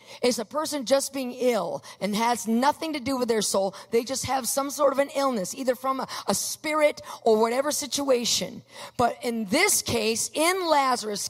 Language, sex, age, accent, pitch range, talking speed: English, female, 40-59, American, 195-275 Hz, 190 wpm